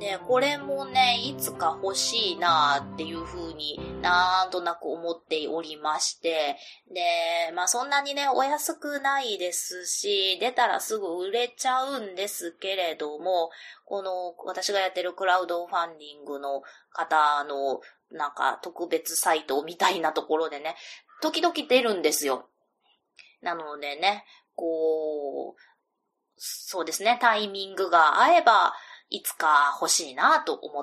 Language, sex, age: Japanese, female, 20-39